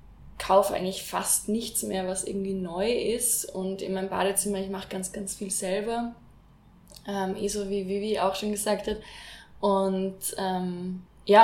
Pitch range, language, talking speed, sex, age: 185-210 Hz, German, 165 wpm, female, 20-39